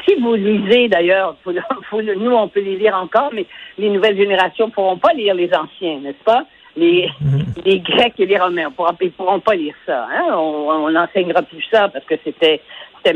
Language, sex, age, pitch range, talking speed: French, female, 60-79, 185-240 Hz, 215 wpm